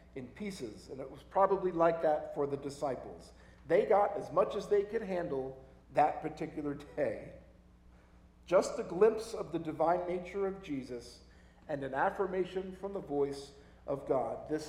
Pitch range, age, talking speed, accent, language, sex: 135-185 Hz, 50-69, 165 wpm, American, English, male